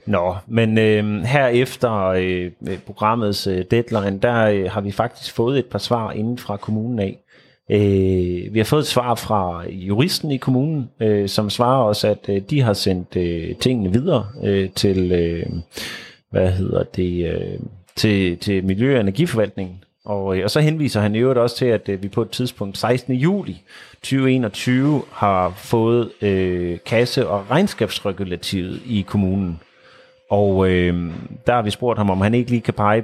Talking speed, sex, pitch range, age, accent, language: 135 wpm, male, 95-120 Hz, 30-49, native, Danish